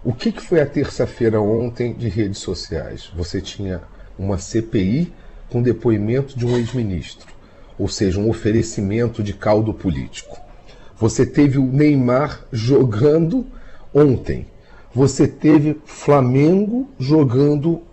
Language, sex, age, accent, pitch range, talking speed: Portuguese, male, 40-59, Brazilian, 110-155 Hz, 115 wpm